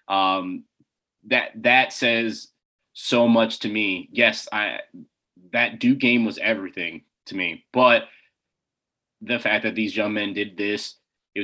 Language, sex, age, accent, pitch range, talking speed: English, male, 20-39, American, 105-120 Hz, 140 wpm